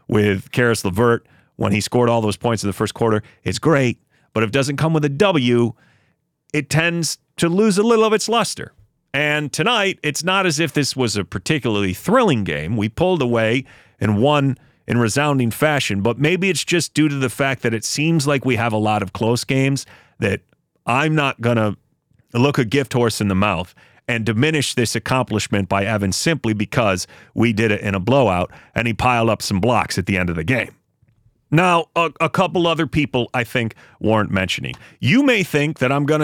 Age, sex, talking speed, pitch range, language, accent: 40-59, male, 205 wpm, 115-155 Hz, English, American